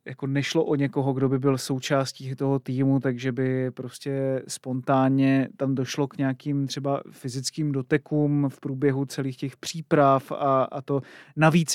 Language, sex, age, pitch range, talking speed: Czech, male, 30-49, 135-150 Hz, 155 wpm